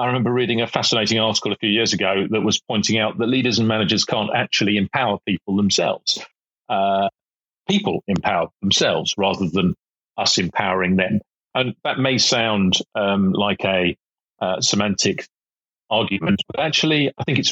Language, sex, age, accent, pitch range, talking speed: English, male, 40-59, British, 105-130 Hz, 160 wpm